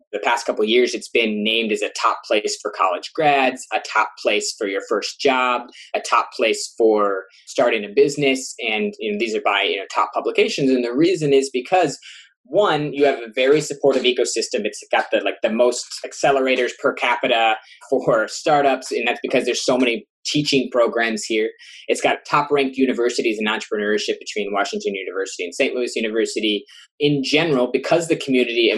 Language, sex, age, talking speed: English, male, 20-39, 190 wpm